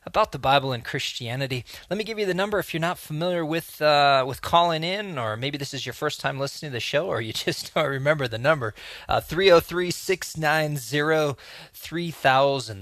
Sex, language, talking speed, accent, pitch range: male, English, 185 wpm, American, 120-155 Hz